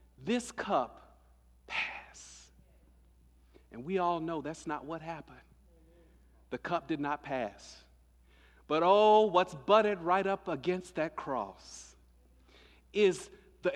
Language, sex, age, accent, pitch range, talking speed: English, male, 50-69, American, 150-235 Hz, 120 wpm